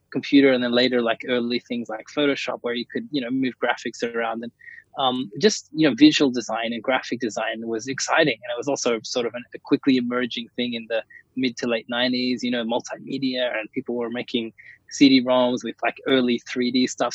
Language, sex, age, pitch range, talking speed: English, male, 20-39, 120-135 Hz, 205 wpm